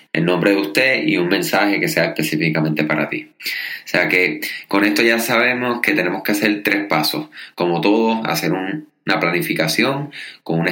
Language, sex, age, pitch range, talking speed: Spanish, male, 20-39, 90-115 Hz, 185 wpm